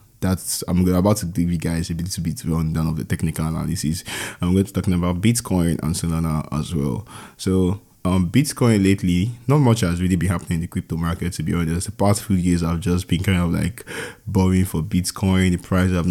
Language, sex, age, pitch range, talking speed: English, male, 20-39, 85-105 Hz, 225 wpm